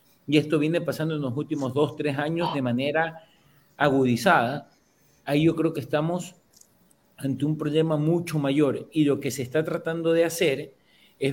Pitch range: 135-160 Hz